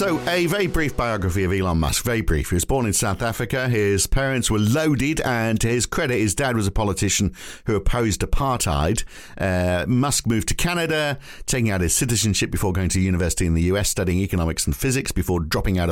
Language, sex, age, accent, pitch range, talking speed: English, male, 50-69, British, 95-125 Hz, 205 wpm